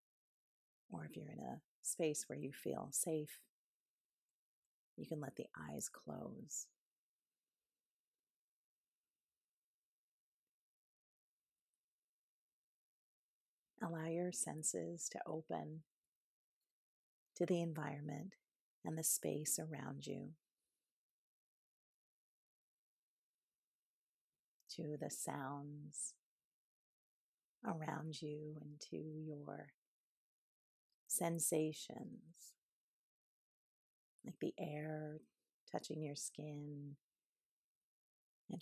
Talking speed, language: 70 wpm, English